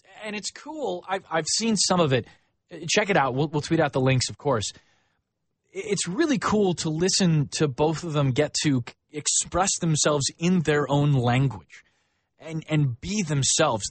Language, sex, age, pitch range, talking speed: English, male, 20-39, 125-160 Hz, 175 wpm